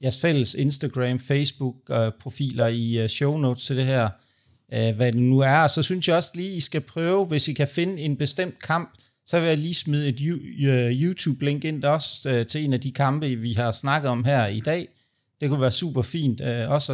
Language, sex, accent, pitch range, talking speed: Danish, male, native, 125-155 Hz, 200 wpm